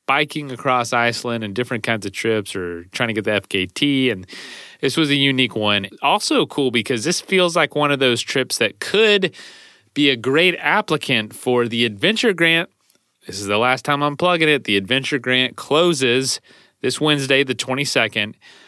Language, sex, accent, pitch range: English, male, American, 110-150 Hz